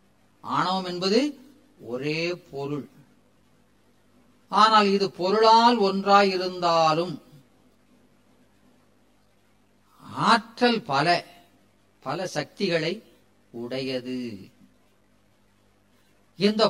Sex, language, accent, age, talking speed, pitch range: female, Tamil, native, 40-59, 55 wpm, 110-175 Hz